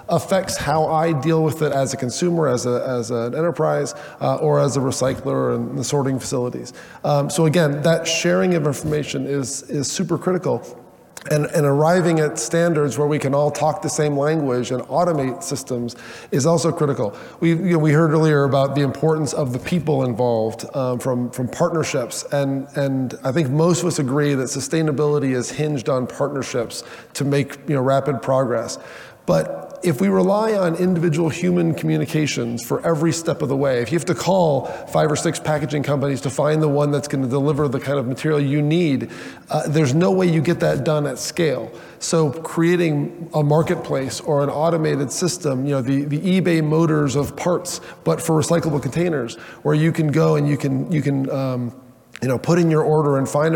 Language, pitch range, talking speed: English, 135-160 Hz, 195 wpm